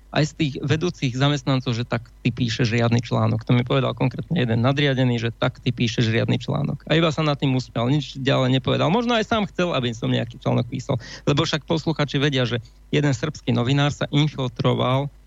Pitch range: 125-150 Hz